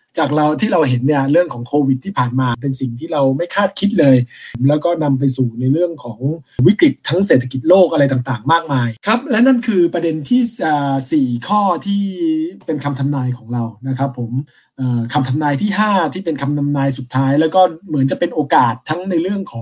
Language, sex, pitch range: Thai, male, 130-185 Hz